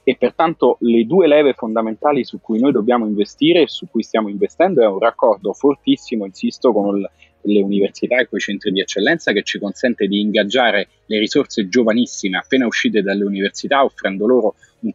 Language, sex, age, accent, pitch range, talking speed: Italian, male, 30-49, native, 100-130 Hz, 185 wpm